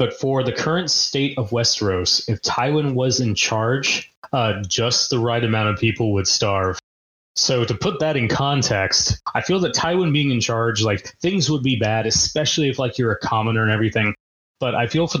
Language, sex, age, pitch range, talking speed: English, male, 20-39, 110-130 Hz, 200 wpm